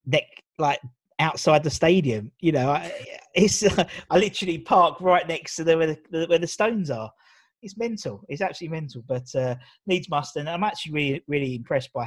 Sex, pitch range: male, 125-165 Hz